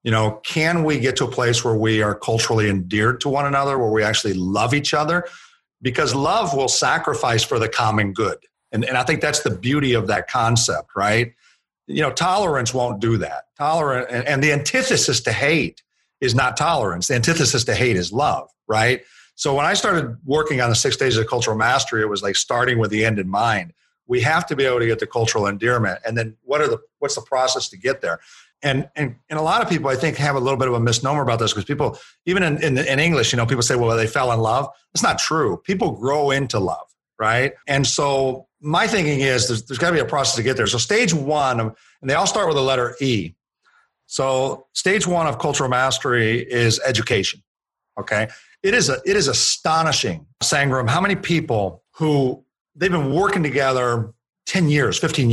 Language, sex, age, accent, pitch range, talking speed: English, male, 50-69, American, 115-150 Hz, 220 wpm